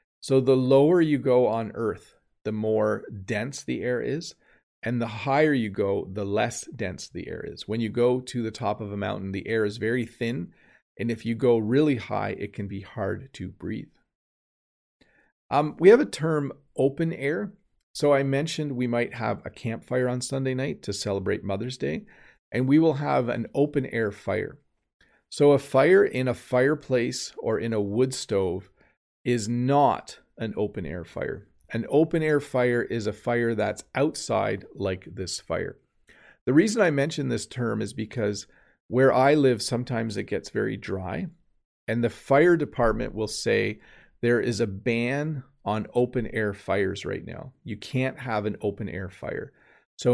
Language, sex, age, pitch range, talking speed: English, male, 40-59, 105-135 Hz, 180 wpm